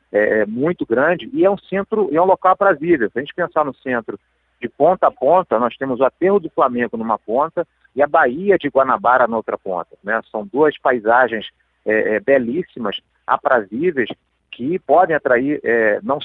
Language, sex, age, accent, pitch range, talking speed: Portuguese, male, 40-59, Brazilian, 120-170 Hz, 170 wpm